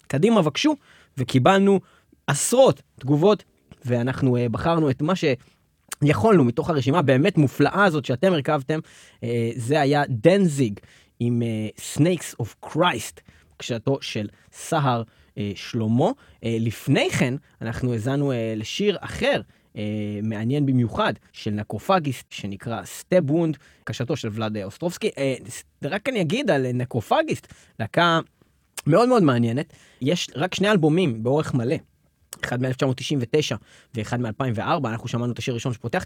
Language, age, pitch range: Hebrew, 20-39, 120-165 Hz